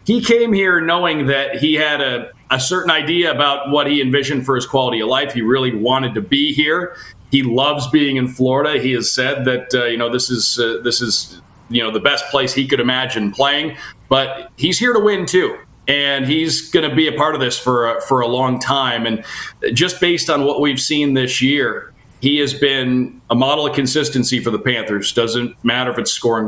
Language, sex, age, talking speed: English, male, 40-59, 220 wpm